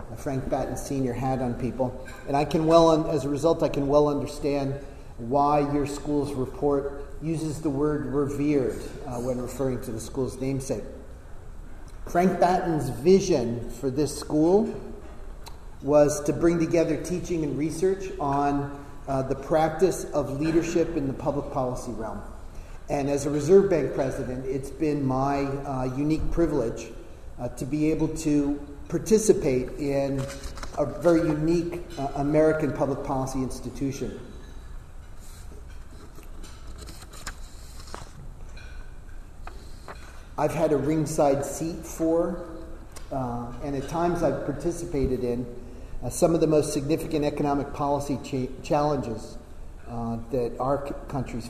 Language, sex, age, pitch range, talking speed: English, male, 40-59, 125-155 Hz, 130 wpm